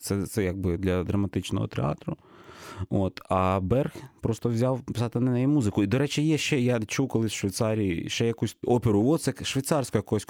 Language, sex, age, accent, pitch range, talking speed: Ukrainian, male, 30-49, native, 95-115 Hz, 170 wpm